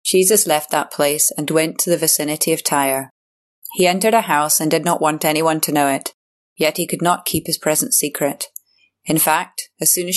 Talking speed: 210 wpm